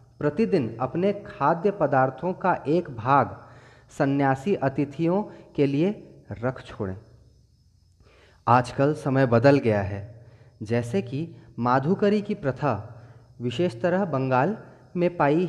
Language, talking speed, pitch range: Hindi, 110 wpm, 120-175 Hz